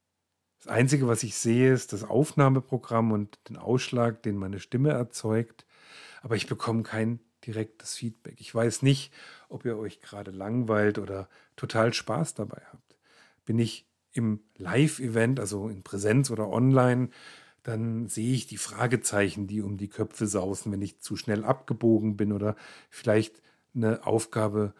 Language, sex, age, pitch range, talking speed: German, male, 50-69, 105-125 Hz, 150 wpm